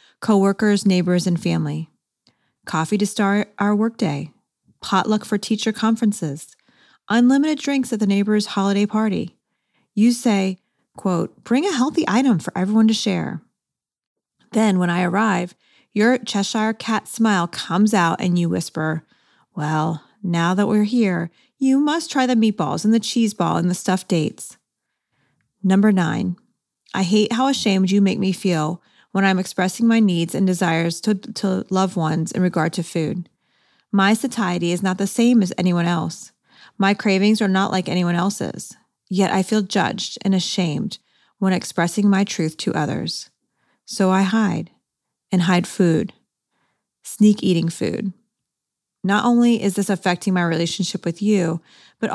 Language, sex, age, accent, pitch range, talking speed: English, female, 30-49, American, 175-220 Hz, 155 wpm